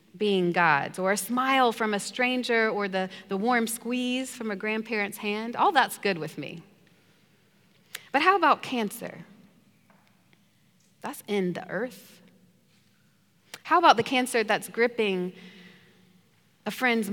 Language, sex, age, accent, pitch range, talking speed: English, female, 30-49, American, 190-240 Hz, 135 wpm